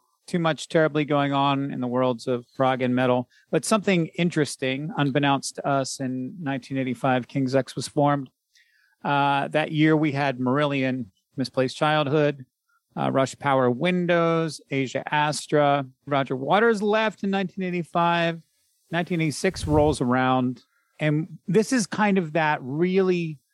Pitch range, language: 135-170 Hz, English